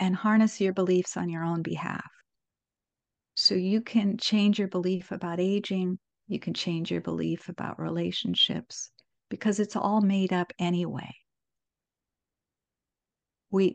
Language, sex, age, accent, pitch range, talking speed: English, female, 50-69, American, 160-200 Hz, 130 wpm